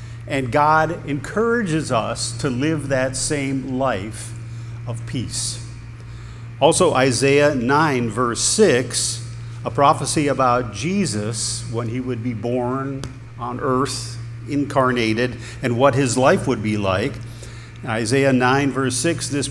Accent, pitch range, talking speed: American, 115-145 Hz, 125 wpm